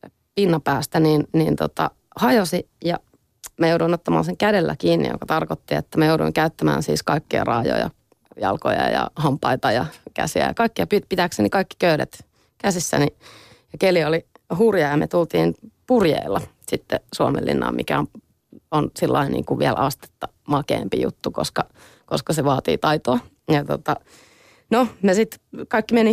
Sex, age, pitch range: female, 30-49, 155-190 Hz